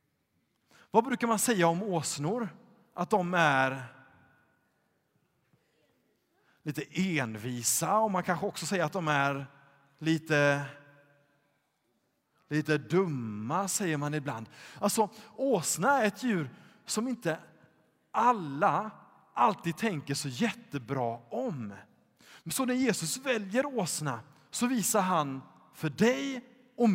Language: Swedish